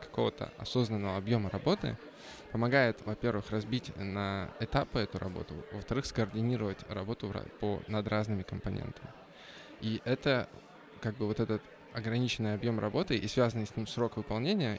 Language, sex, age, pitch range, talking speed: Russian, male, 20-39, 105-125 Hz, 135 wpm